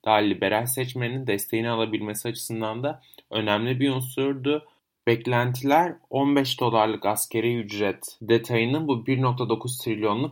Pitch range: 105-130 Hz